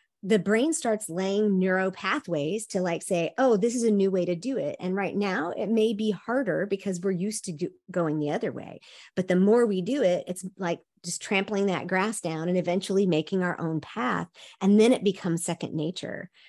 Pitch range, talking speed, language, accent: 175-225 Hz, 215 wpm, English, American